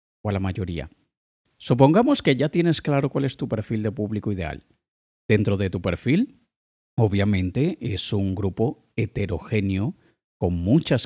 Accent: Spanish